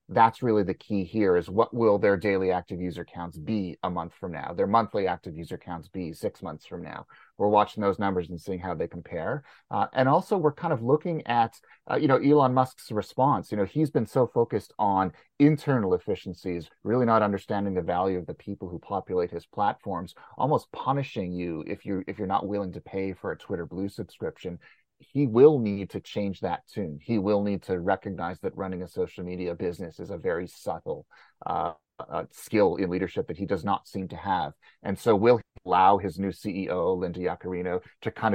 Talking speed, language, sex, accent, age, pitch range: 210 wpm, English, male, American, 30-49, 90-115 Hz